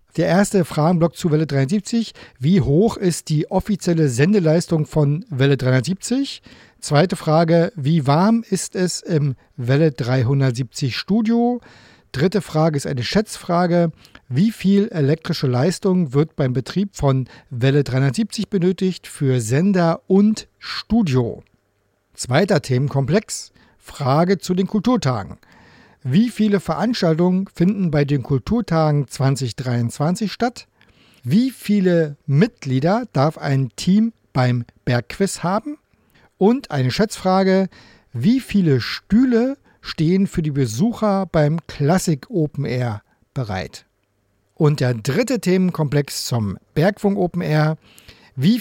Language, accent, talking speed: German, German, 115 wpm